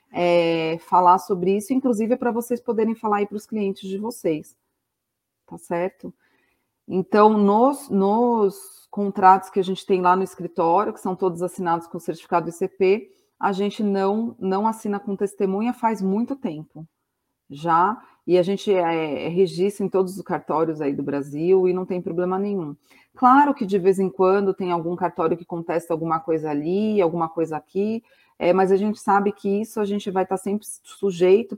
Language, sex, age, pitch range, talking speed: Portuguese, female, 30-49, 170-210 Hz, 180 wpm